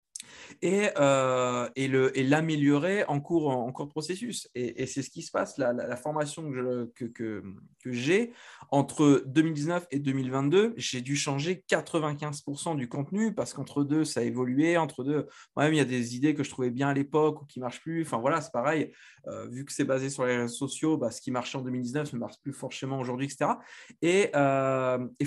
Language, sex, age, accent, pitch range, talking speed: French, male, 20-39, French, 130-165 Hz, 215 wpm